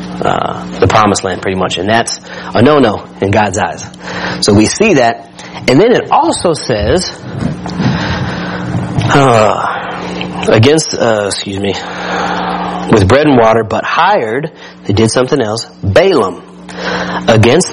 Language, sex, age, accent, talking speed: English, male, 30-49, American, 130 wpm